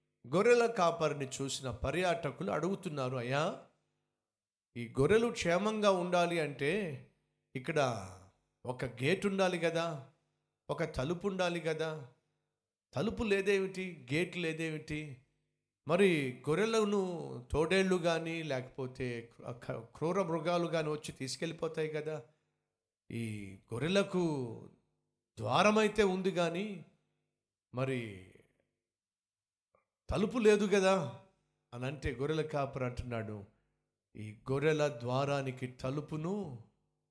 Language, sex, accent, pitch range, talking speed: Telugu, male, native, 115-165 Hz, 85 wpm